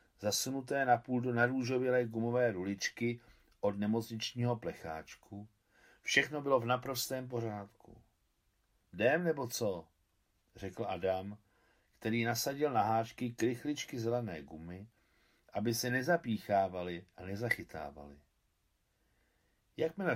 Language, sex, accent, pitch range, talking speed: Czech, male, native, 100-125 Hz, 100 wpm